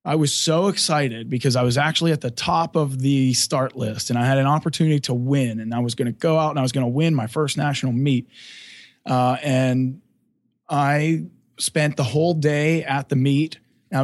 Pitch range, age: 130-160 Hz, 20-39